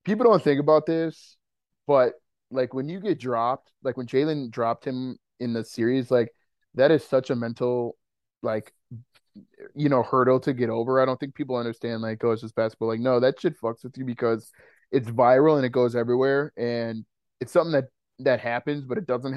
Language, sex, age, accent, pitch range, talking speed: English, male, 20-39, American, 115-130 Hz, 200 wpm